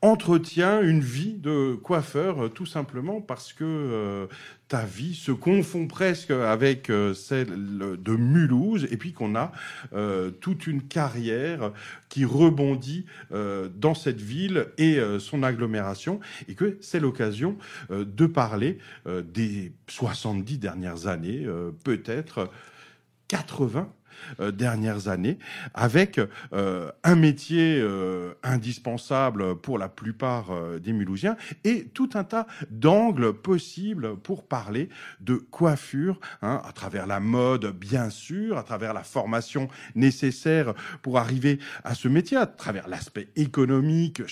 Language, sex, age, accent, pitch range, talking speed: French, male, 40-59, French, 110-160 Hz, 130 wpm